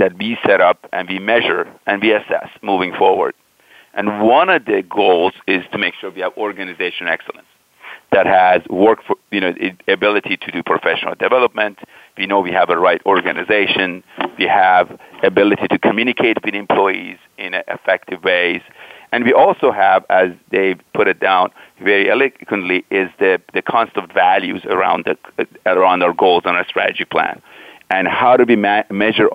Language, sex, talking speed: English, male, 170 wpm